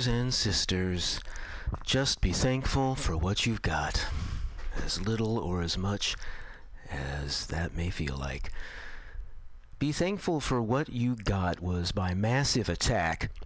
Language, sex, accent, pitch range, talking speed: English, male, American, 85-115 Hz, 130 wpm